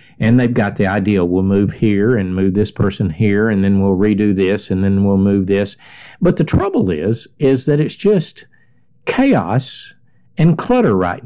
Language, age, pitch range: English, 50-69, 110-155 Hz